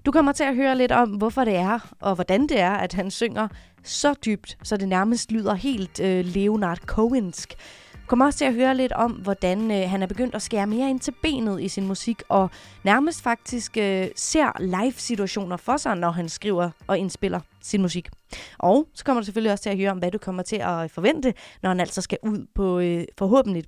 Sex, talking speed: female, 220 wpm